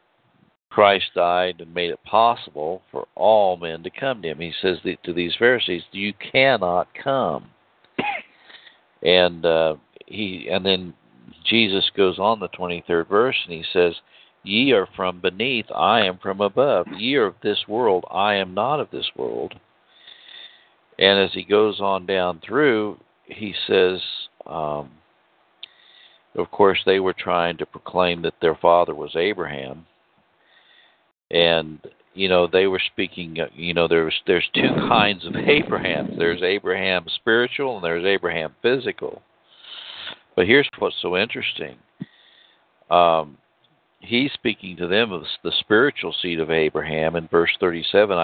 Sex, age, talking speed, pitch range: male, 60-79, 145 wpm, 85-100 Hz